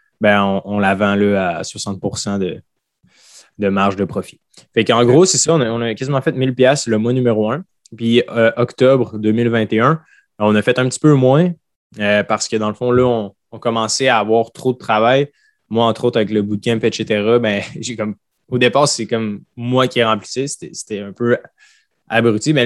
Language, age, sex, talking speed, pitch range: French, 20-39, male, 205 wpm, 105-120 Hz